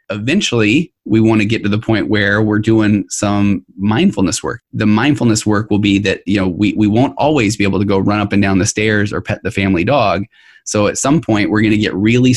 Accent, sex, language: American, male, English